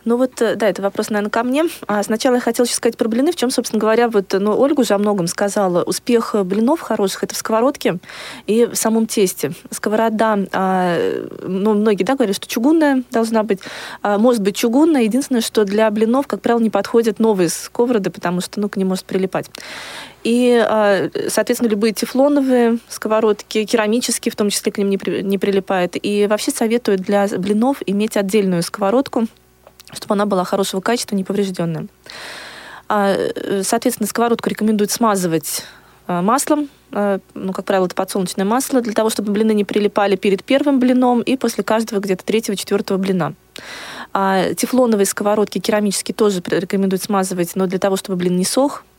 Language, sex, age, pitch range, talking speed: Russian, female, 20-39, 195-240 Hz, 170 wpm